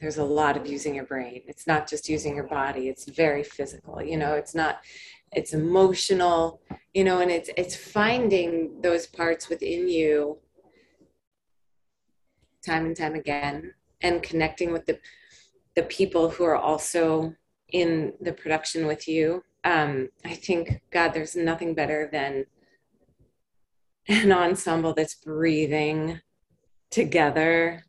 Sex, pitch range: female, 150-170 Hz